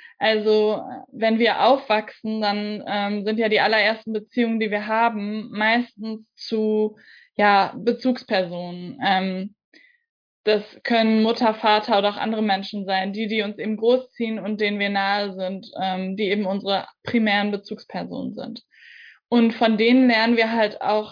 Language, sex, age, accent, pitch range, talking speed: German, female, 10-29, German, 205-235 Hz, 145 wpm